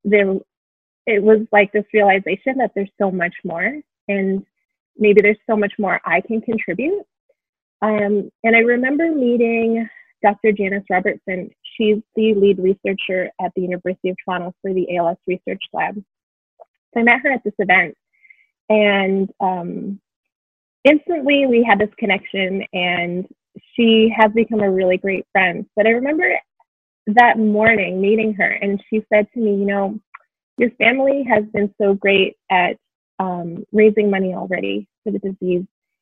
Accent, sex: American, female